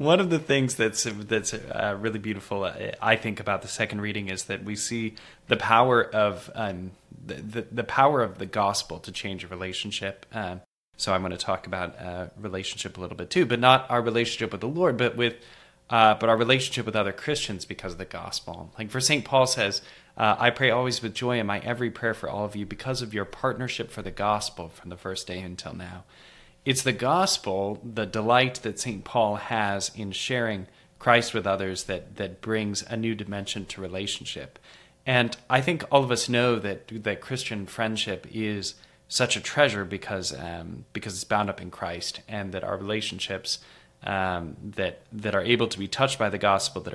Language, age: English, 20-39